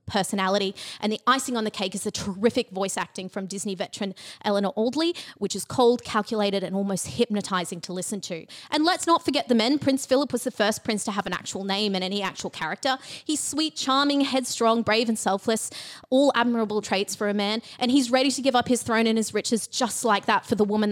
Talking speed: 225 wpm